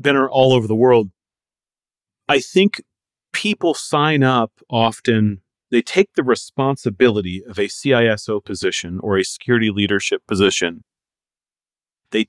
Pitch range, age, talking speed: 105-130 Hz, 40-59, 120 wpm